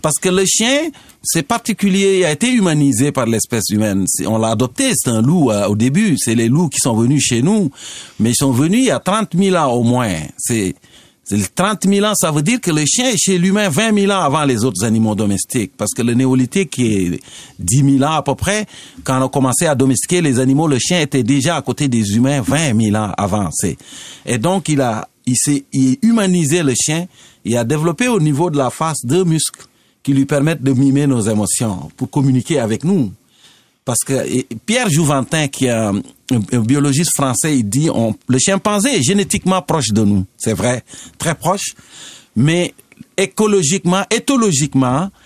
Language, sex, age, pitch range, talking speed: French, male, 50-69, 120-180 Hz, 200 wpm